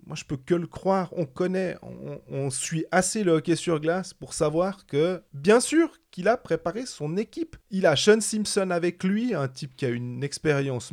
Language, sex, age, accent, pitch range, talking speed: French, male, 30-49, French, 130-180 Hz, 210 wpm